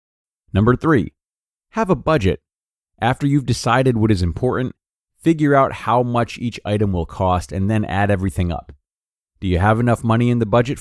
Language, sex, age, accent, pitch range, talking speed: English, male, 30-49, American, 95-125 Hz, 180 wpm